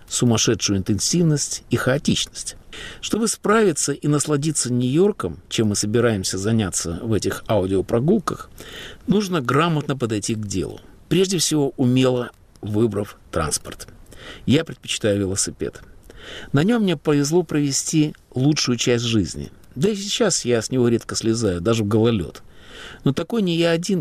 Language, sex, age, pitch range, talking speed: Russian, male, 50-69, 115-155 Hz, 130 wpm